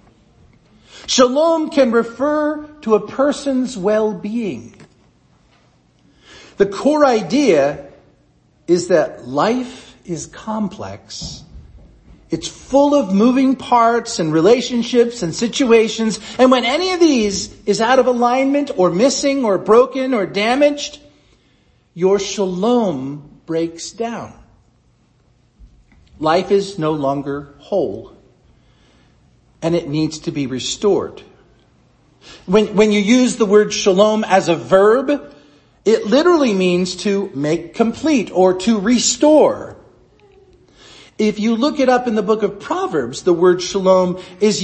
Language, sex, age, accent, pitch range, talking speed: English, male, 50-69, American, 175-250 Hz, 115 wpm